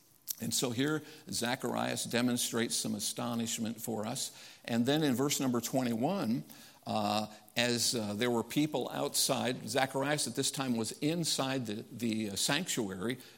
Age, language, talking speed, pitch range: 50-69, English, 145 wpm, 115-145 Hz